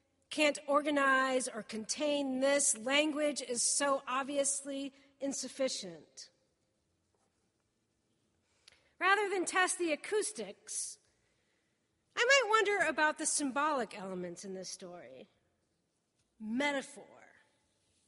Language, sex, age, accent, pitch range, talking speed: English, female, 40-59, American, 260-325 Hz, 85 wpm